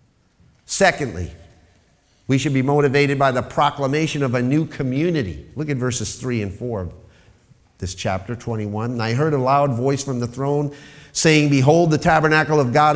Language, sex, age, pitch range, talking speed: English, male, 50-69, 100-145 Hz, 170 wpm